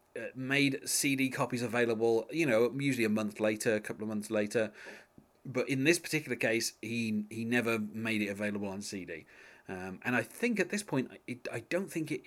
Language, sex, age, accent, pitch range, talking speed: English, male, 30-49, British, 110-140 Hz, 190 wpm